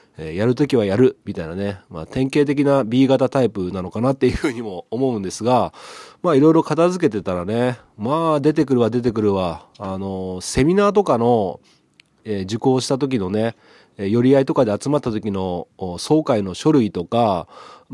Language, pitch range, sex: Japanese, 100-140 Hz, male